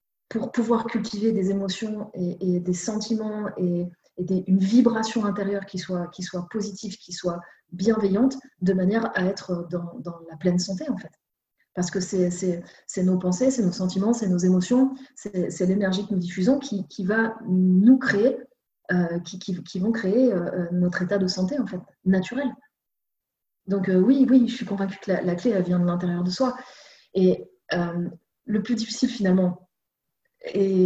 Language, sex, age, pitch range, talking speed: French, female, 30-49, 180-215 Hz, 185 wpm